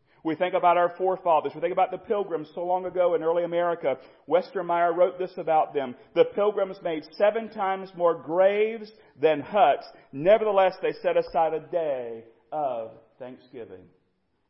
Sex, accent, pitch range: male, American, 150-220 Hz